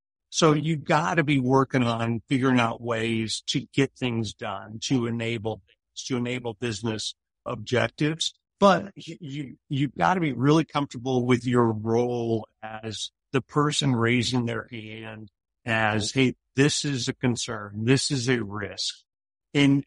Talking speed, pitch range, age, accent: 145 wpm, 115-150 Hz, 50-69, American